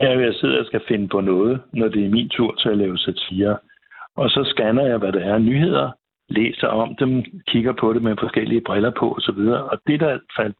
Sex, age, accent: male, 60-79, native